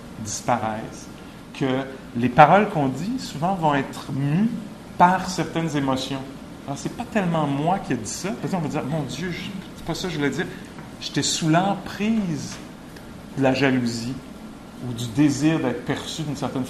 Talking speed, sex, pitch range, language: 175 wpm, male, 125-180 Hz, English